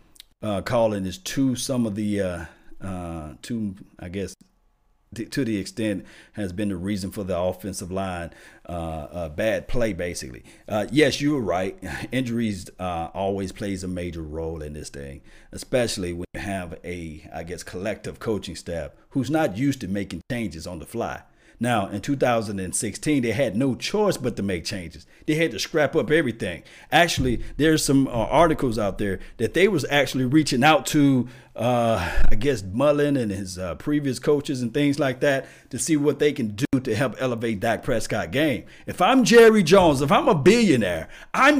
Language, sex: English, male